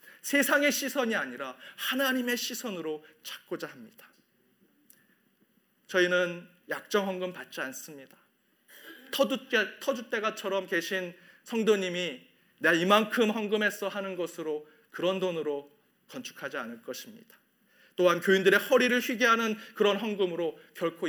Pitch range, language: 175-235 Hz, Korean